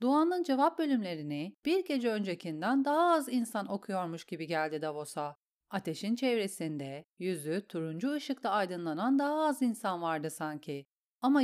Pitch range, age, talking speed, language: 165-260 Hz, 40-59, 130 wpm, Turkish